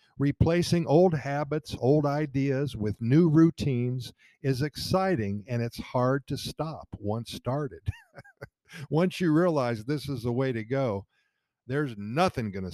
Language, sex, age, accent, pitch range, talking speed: English, male, 50-69, American, 110-155 Hz, 140 wpm